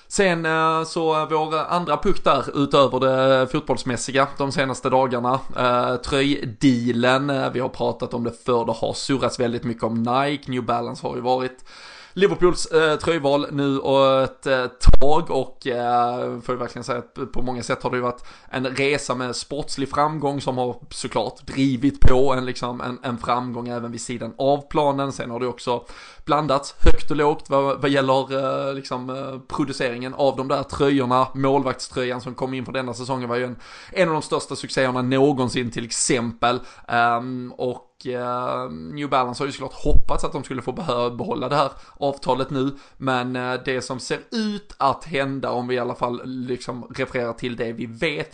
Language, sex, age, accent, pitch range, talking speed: Swedish, male, 20-39, native, 125-140 Hz, 170 wpm